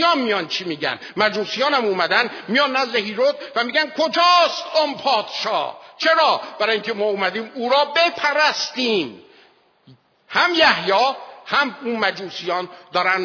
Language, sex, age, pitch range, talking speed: Persian, male, 50-69, 200-280 Hz, 125 wpm